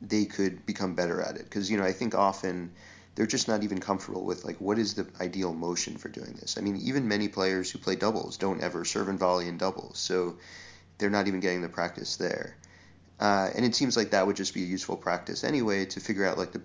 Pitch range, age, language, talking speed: 90-100 Hz, 30-49, English, 245 wpm